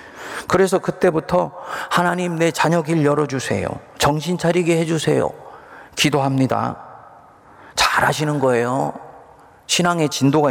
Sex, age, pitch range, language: male, 40-59, 115-155 Hz, Korean